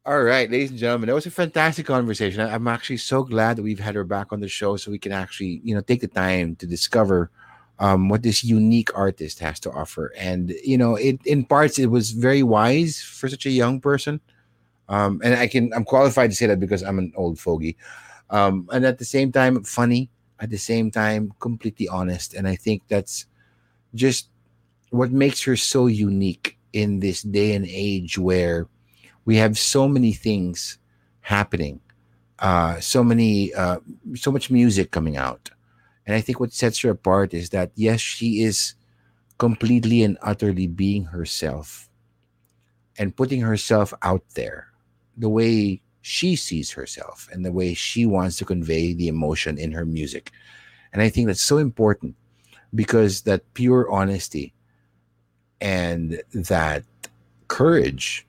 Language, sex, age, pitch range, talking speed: English, male, 30-49, 95-120 Hz, 170 wpm